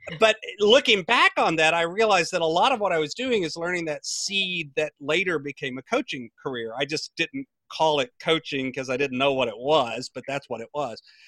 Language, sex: English, male